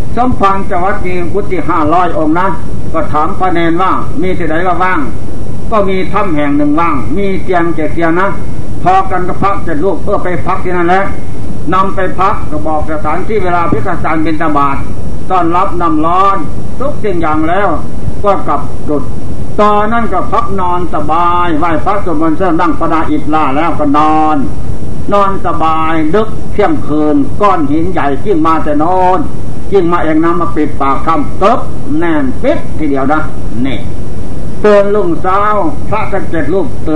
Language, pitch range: Thai, 150-185 Hz